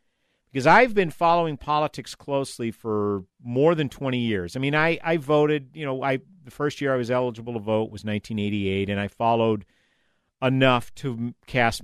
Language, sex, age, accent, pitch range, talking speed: English, male, 50-69, American, 100-130 Hz, 175 wpm